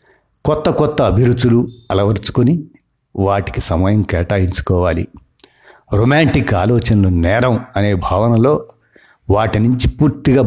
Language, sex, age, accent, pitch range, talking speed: Telugu, male, 60-79, native, 95-120 Hz, 85 wpm